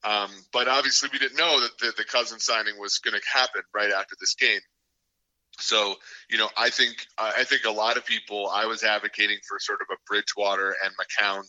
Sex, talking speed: male, 210 wpm